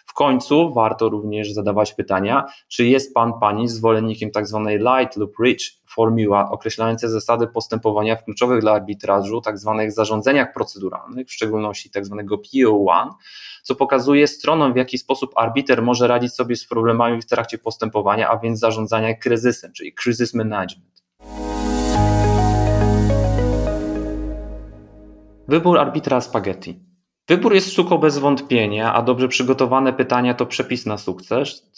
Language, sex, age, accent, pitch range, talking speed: Polish, male, 20-39, native, 105-125 Hz, 135 wpm